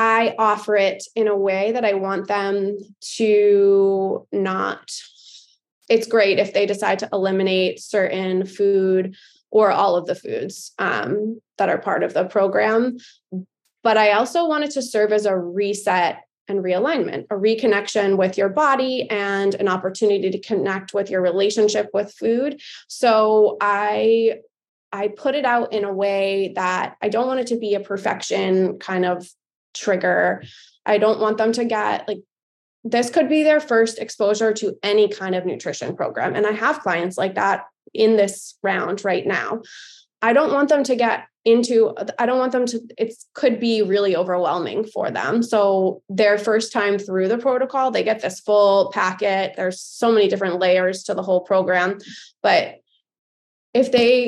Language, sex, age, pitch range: English, female, 20-39, 195-230 Hz